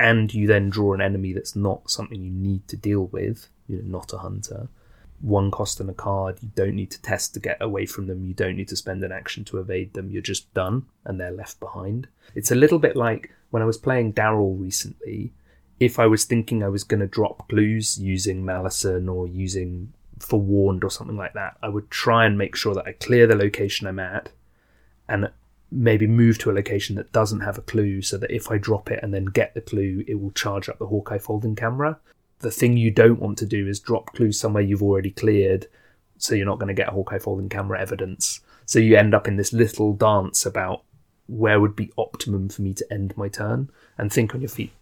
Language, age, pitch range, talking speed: English, 30-49, 95-115 Hz, 230 wpm